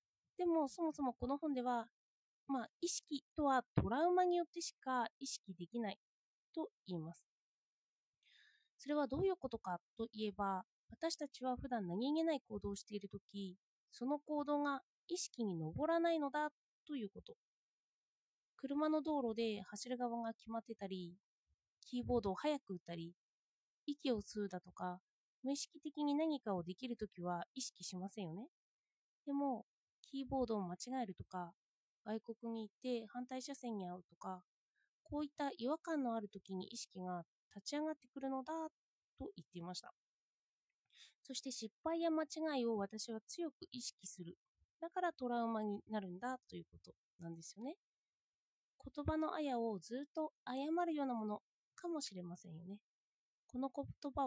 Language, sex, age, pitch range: Japanese, female, 20-39, 205-295 Hz